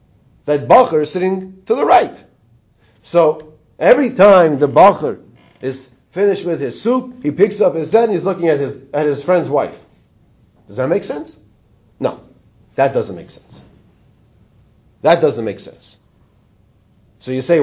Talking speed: 155 wpm